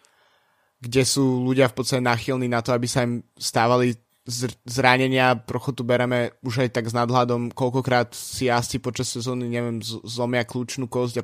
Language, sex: Slovak, male